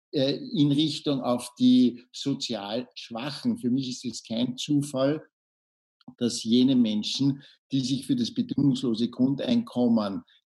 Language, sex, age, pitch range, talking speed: German, male, 60-79, 120-155 Hz, 120 wpm